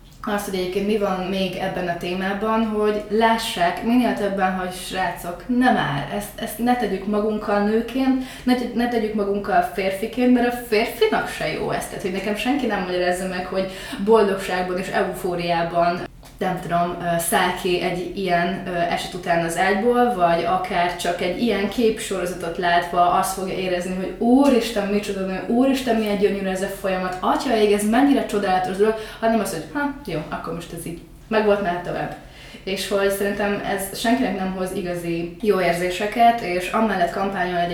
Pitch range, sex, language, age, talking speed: 180-215 Hz, female, Hungarian, 20-39, 170 wpm